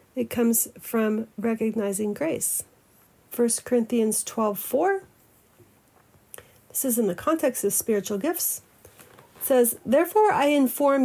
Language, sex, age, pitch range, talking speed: English, female, 40-59, 210-255 Hz, 115 wpm